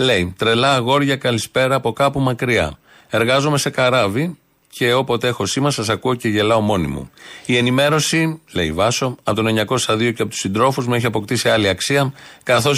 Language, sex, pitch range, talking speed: Greek, male, 110-130 Hz, 175 wpm